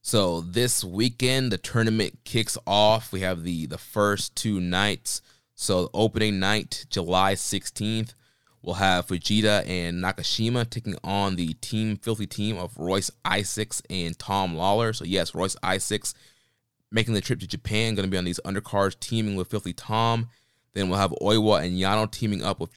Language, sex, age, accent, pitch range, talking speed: English, male, 20-39, American, 95-115 Hz, 170 wpm